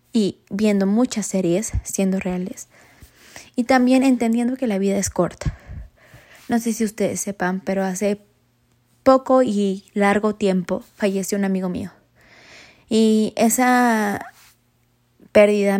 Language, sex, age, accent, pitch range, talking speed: Spanish, female, 20-39, Mexican, 185-215 Hz, 120 wpm